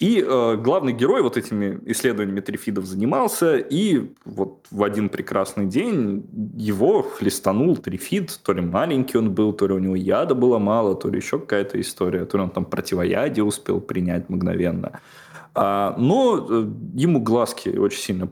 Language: Russian